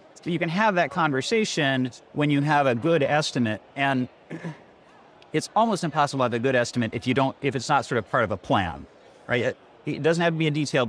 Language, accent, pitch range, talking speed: English, American, 120-155 Hz, 220 wpm